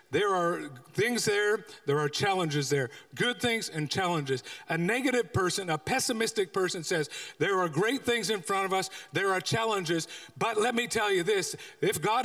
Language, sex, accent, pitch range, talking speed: English, male, American, 200-265 Hz, 185 wpm